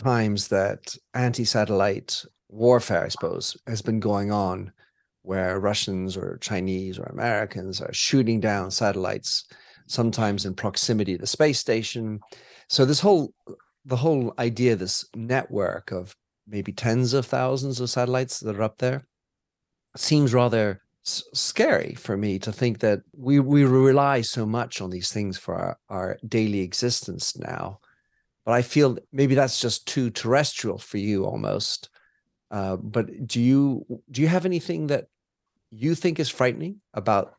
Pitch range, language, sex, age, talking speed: 105-130 Hz, English, male, 40-59, 150 wpm